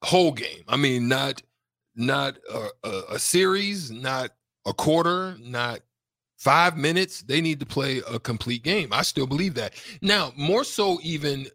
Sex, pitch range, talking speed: male, 120-145 Hz, 155 wpm